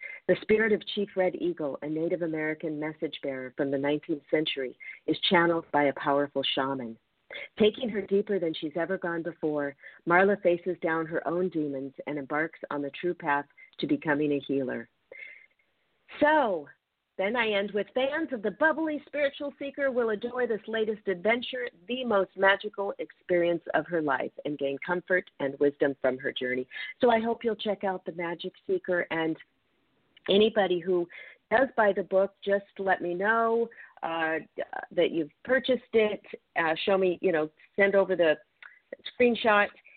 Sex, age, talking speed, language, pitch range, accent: female, 50-69, 165 wpm, English, 160-225 Hz, American